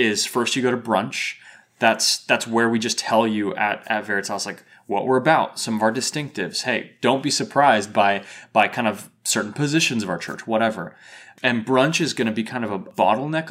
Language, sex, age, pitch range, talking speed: English, male, 20-39, 110-135 Hz, 215 wpm